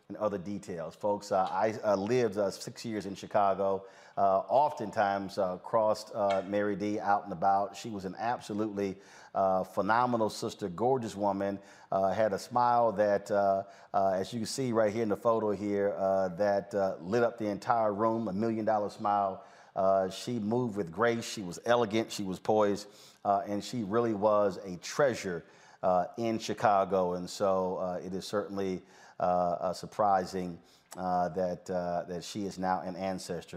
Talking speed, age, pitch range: 175 wpm, 40-59, 95-115 Hz